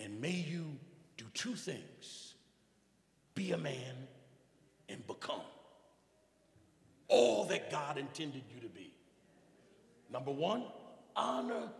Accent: American